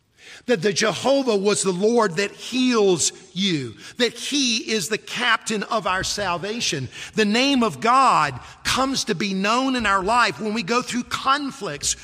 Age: 50-69